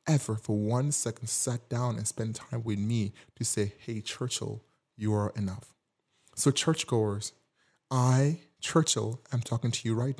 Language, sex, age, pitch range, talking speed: English, male, 30-49, 110-145 Hz, 160 wpm